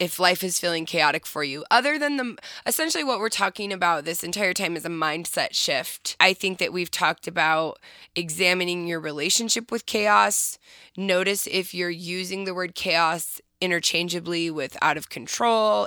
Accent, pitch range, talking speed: American, 165-195 Hz, 165 wpm